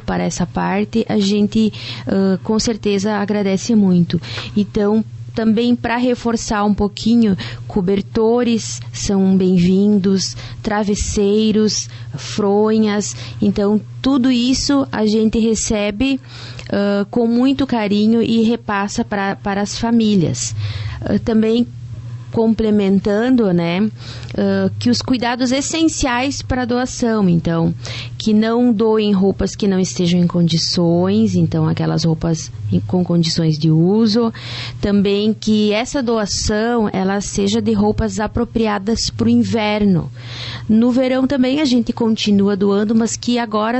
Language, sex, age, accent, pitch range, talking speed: Portuguese, female, 20-39, Brazilian, 175-225 Hz, 115 wpm